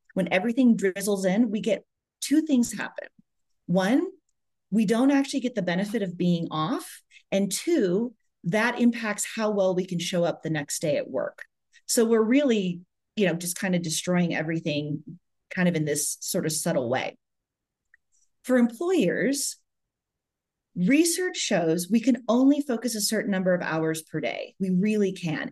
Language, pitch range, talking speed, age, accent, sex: English, 175-245 Hz, 165 wpm, 30-49, American, female